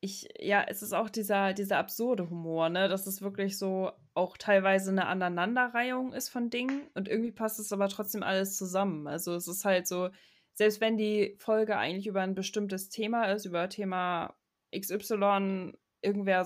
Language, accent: German, German